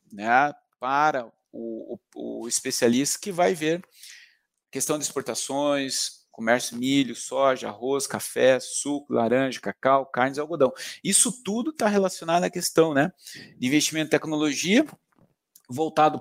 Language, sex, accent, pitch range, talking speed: Portuguese, male, Brazilian, 135-180 Hz, 130 wpm